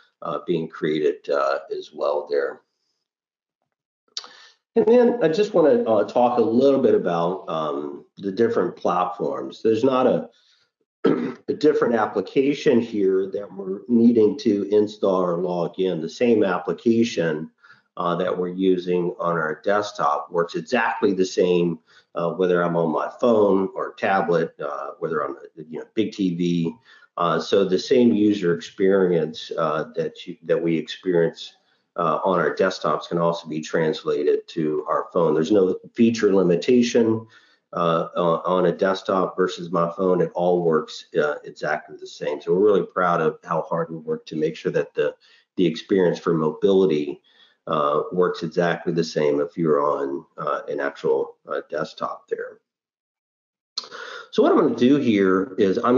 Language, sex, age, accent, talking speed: English, male, 50-69, American, 160 wpm